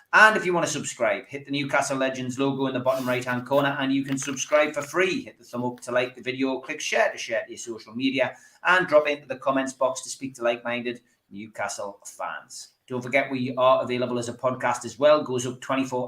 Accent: British